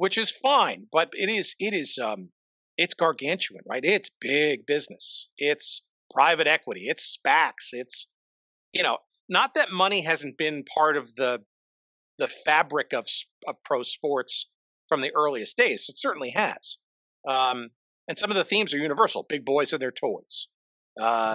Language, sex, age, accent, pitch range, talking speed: English, male, 50-69, American, 125-180 Hz, 165 wpm